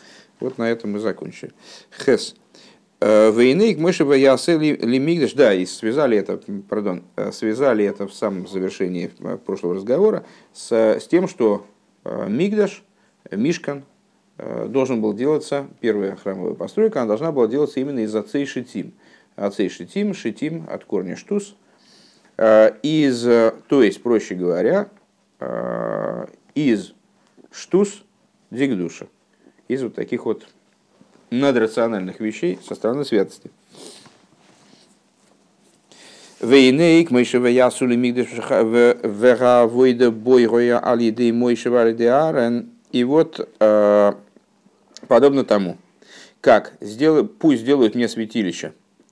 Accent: native